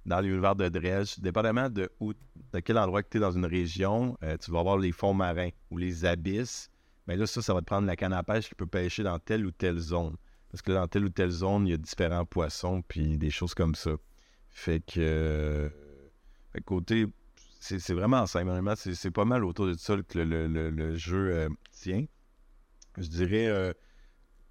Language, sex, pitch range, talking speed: French, male, 85-105 Hz, 225 wpm